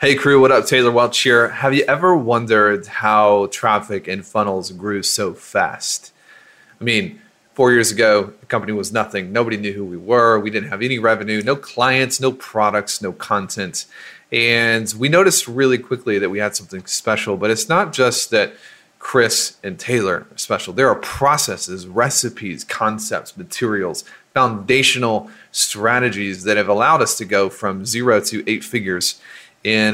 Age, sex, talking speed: 30-49, male, 165 wpm